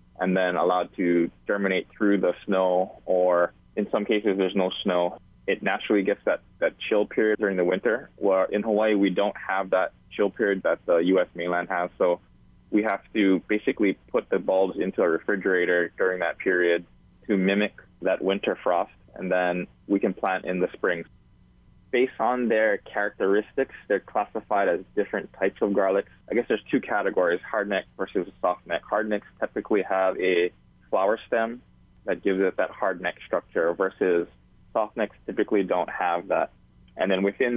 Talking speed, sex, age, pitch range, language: 170 wpm, male, 20-39, 90-100 Hz, English